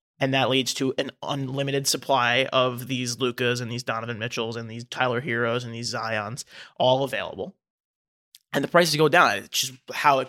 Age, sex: 20-39, male